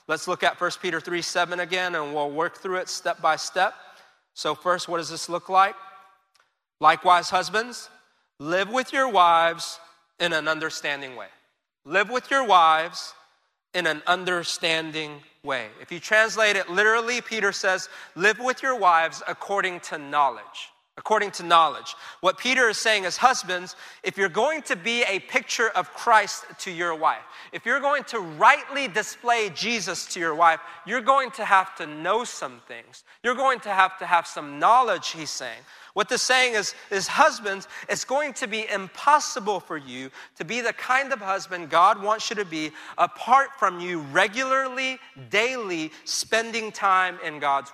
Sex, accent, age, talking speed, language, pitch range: male, American, 30-49, 170 wpm, English, 170-225 Hz